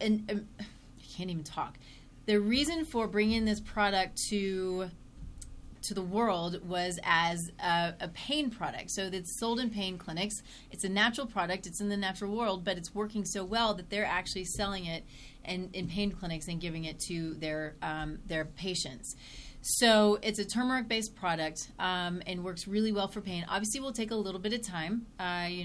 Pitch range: 175-215 Hz